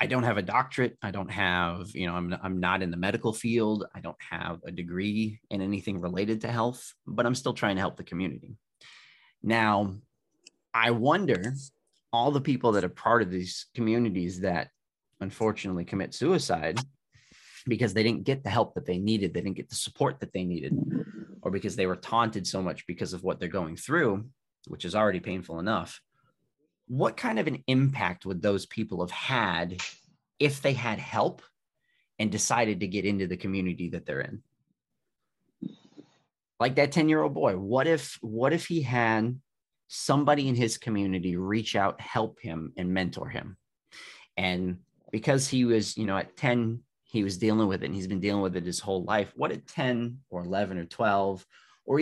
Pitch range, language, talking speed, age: 95-125 Hz, English, 185 wpm, 30-49